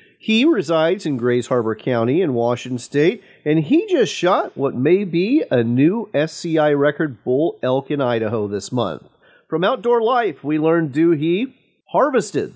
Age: 40-59